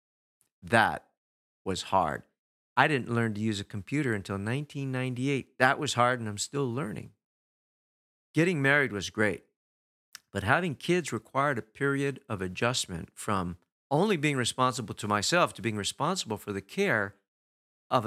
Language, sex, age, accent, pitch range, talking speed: English, male, 50-69, American, 105-155 Hz, 145 wpm